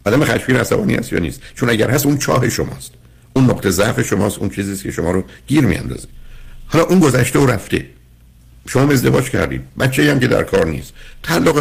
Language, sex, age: Persian, male, 60-79